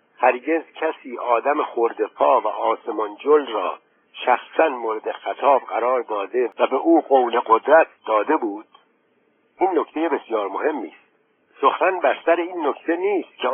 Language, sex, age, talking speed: Persian, male, 60-79, 140 wpm